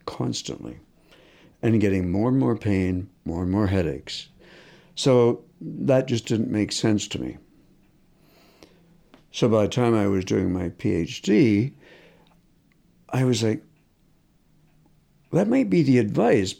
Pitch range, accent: 95-130 Hz, American